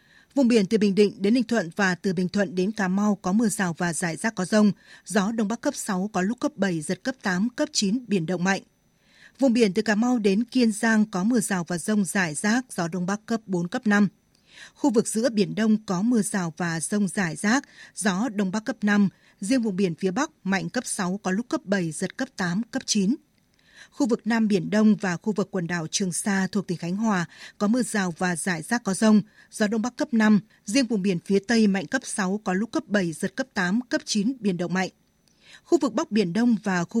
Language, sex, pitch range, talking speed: Vietnamese, female, 190-230 Hz, 245 wpm